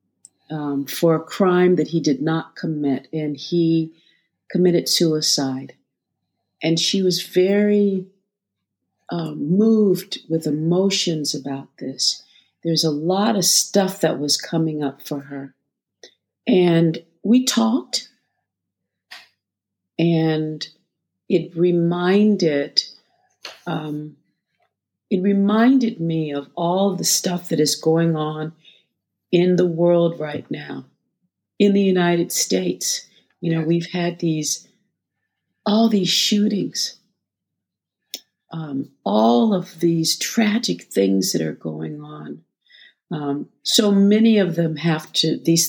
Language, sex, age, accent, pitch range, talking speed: English, female, 50-69, American, 150-185 Hz, 115 wpm